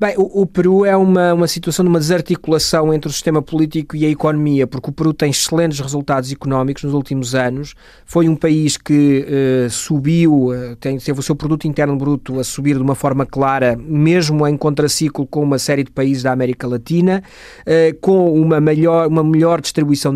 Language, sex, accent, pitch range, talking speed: Portuguese, male, Portuguese, 140-160 Hz, 190 wpm